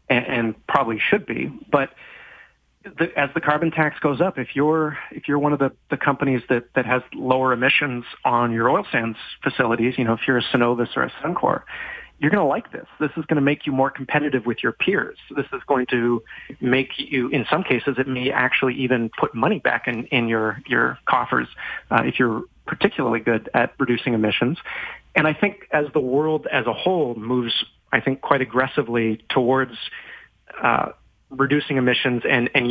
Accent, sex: American, male